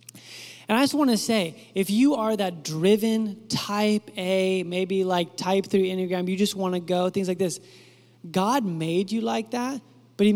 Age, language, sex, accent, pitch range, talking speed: 20-39, English, male, American, 185-225 Hz, 190 wpm